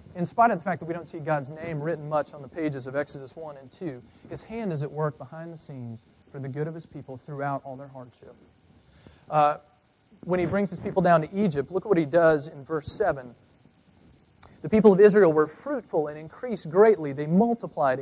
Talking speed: 225 wpm